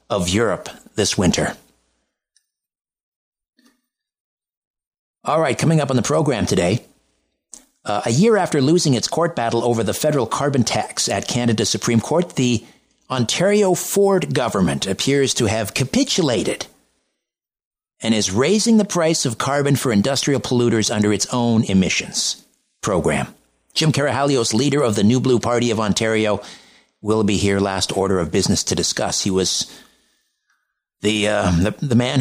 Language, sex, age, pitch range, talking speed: English, male, 50-69, 100-140 Hz, 145 wpm